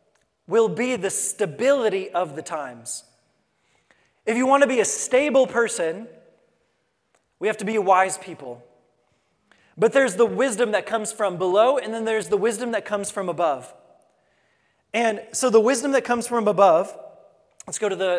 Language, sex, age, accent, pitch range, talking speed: English, male, 20-39, American, 185-245 Hz, 165 wpm